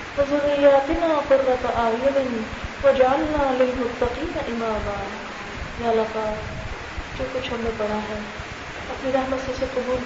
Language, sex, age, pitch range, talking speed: Urdu, female, 20-39, 225-260 Hz, 130 wpm